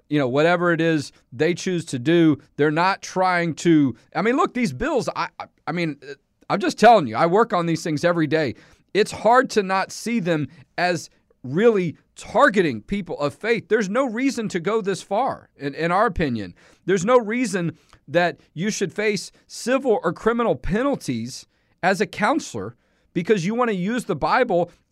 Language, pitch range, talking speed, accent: English, 165-225 Hz, 185 wpm, American